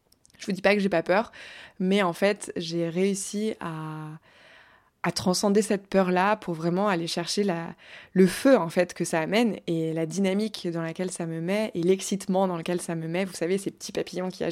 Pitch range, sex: 170-200 Hz, female